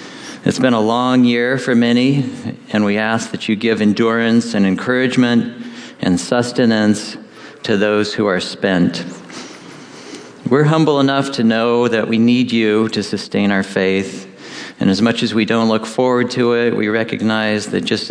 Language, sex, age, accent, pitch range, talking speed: English, male, 50-69, American, 105-125 Hz, 165 wpm